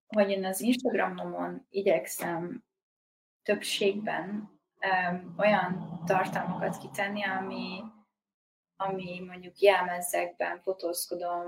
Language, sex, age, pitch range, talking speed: Hungarian, female, 20-39, 175-205 Hz, 80 wpm